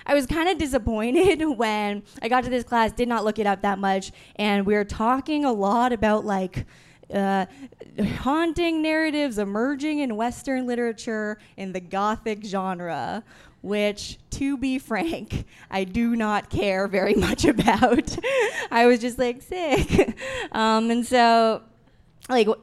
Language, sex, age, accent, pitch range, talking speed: English, female, 20-39, American, 195-255 Hz, 150 wpm